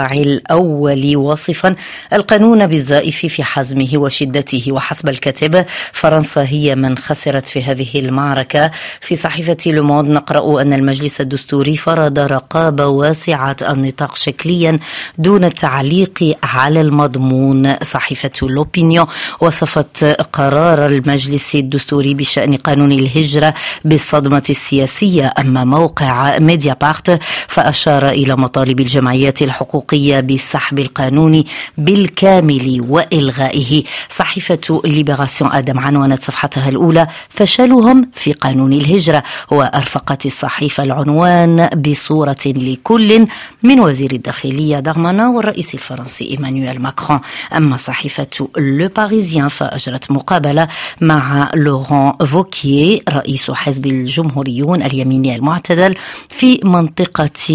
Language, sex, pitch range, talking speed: Arabic, female, 140-160 Hz, 100 wpm